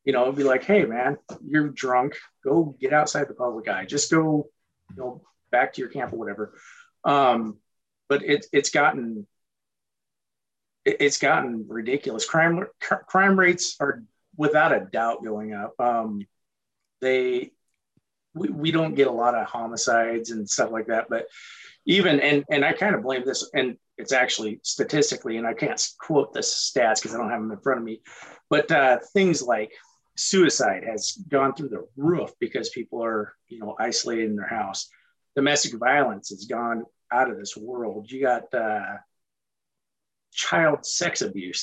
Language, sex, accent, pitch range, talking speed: English, male, American, 110-150 Hz, 170 wpm